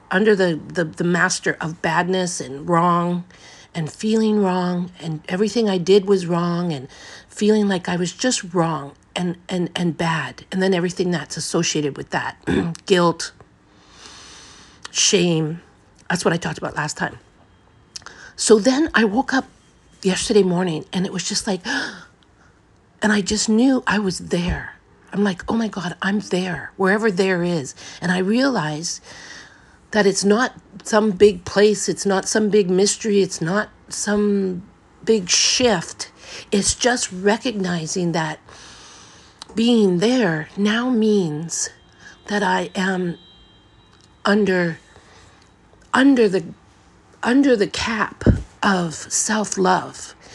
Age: 50-69